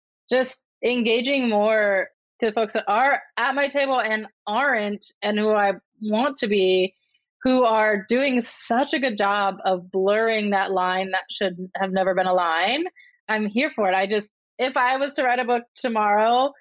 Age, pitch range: 20-39, 205-275 Hz